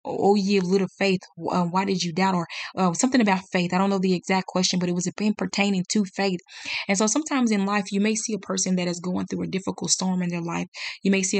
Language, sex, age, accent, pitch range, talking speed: English, female, 20-39, American, 175-200 Hz, 255 wpm